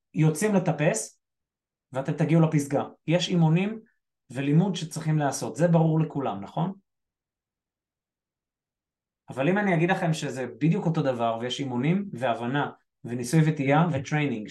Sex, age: male, 20-39